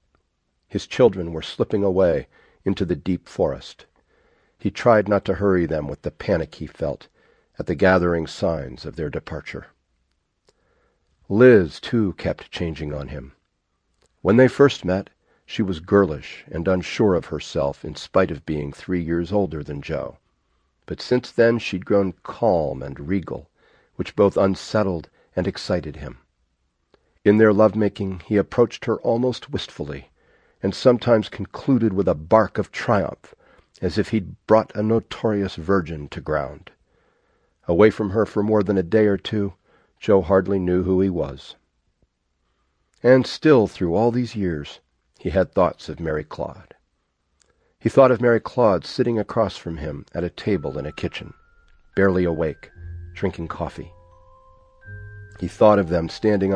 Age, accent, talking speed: 50-69, American, 155 wpm